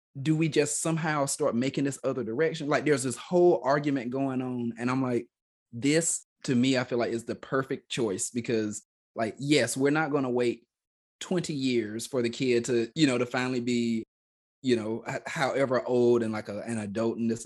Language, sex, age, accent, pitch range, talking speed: English, male, 30-49, American, 115-140 Hz, 200 wpm